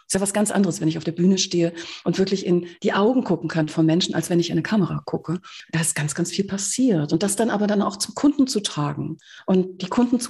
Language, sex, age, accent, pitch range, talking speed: German, female, 40-59, German, 165-200 Hz, 275 wpm